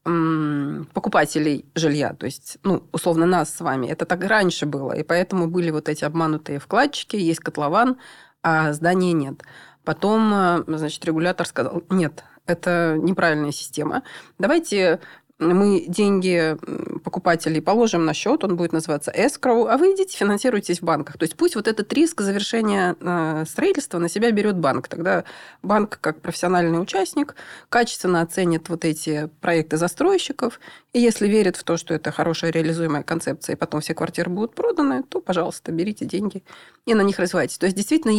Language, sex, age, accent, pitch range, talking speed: Russian, female, 30-49, native, 160-205 Hz, 155 wpm